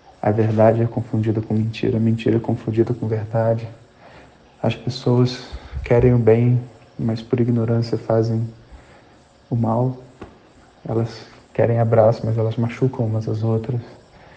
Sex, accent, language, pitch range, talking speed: male, Brazilian, Portuguese, 110-125 Hz, 135 wpm